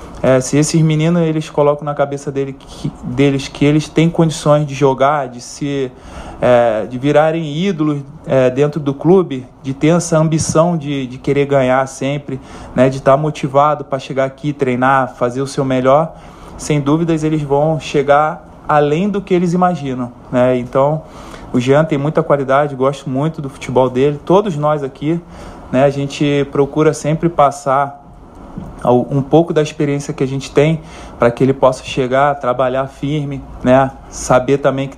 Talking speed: 170 wpm